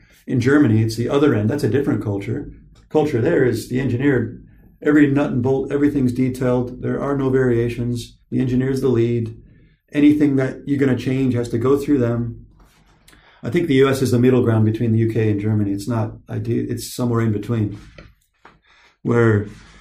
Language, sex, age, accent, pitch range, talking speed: English, male, 50-69, American, 110-135 Hz, 185 wpm